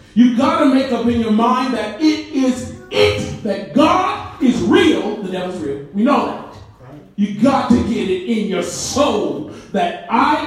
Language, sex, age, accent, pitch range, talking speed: English, male, 40-59, American, 210-280 Hz, 185 wpm